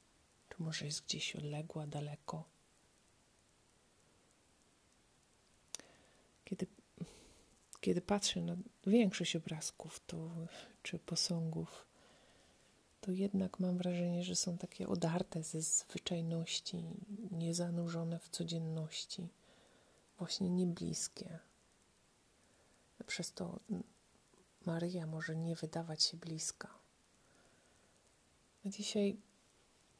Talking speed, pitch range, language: 75 wpm, 165-185 Hz, Polish